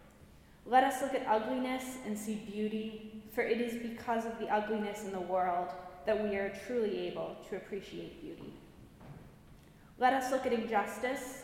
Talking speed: 165 wpm